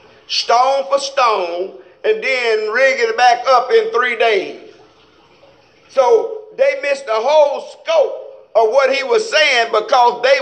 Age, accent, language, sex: 50-69, American, English, male